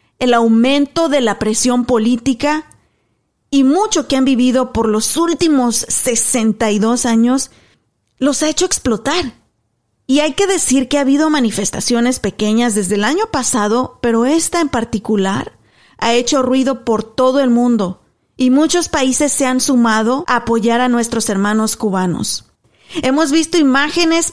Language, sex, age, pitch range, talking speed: Spanish, female, 40-59, 230-285 Hz, 145 wpm